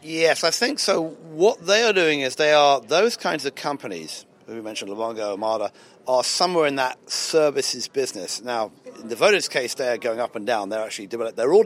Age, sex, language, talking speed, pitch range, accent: 40-59, male, English, 205 wpm, 115-150 Hz, British